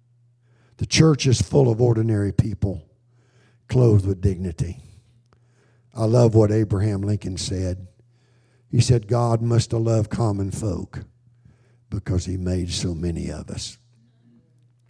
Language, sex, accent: English, male, American